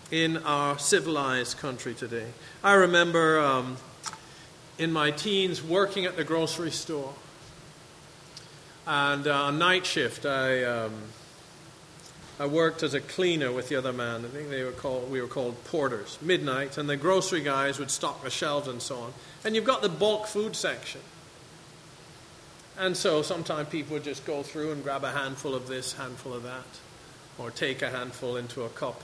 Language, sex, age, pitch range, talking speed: English, male, 40-59, 135-170 Hz, 175 wpm